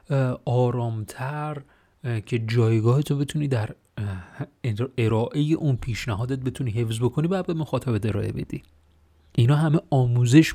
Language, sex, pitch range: Persian, male, 110-145 Hz